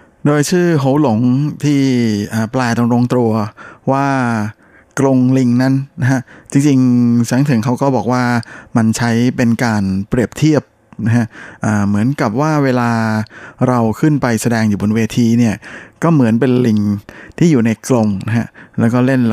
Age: 20-39